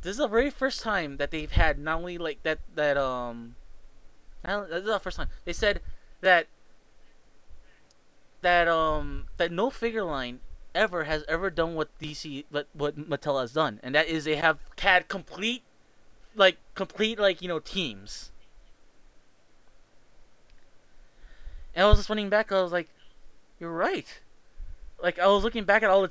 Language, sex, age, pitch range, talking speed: English, male, 20-39, 155-200 Hz, 165 wpm